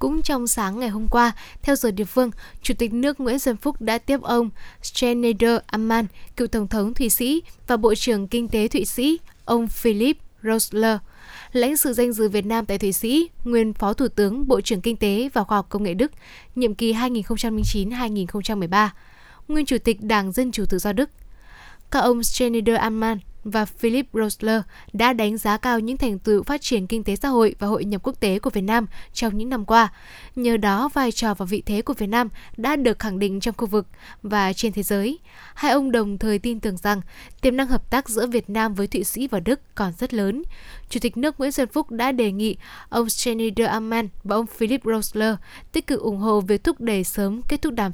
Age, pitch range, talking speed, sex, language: 10-29, 210-245 Hz, 215 wpm, female, Vietnamese